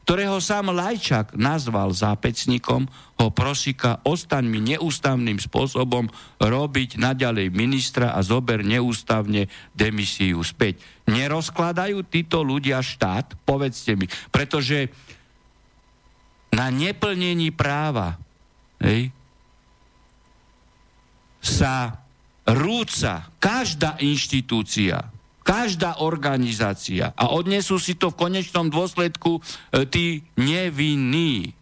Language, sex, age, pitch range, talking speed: Slovak, male, 50-69, 115-155 Hz, 85 wpm